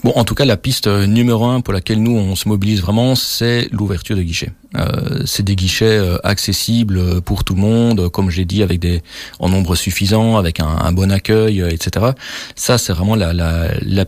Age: 40-59